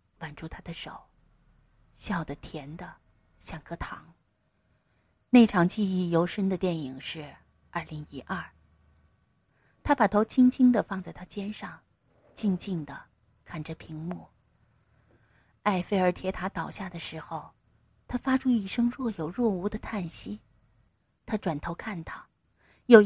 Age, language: 30-49, Chinese